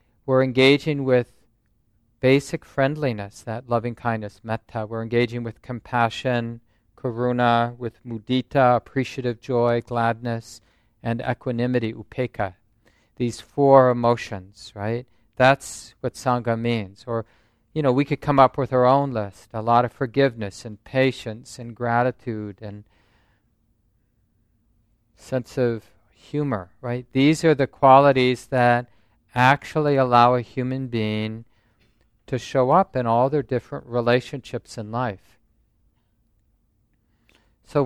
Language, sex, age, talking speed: English, male, 40-59, 115 wpm